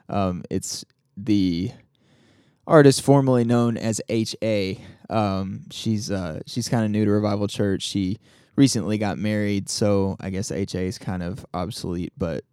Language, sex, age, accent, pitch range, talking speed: English, male, 20-39, American, 100-120 Hz, 150 wpm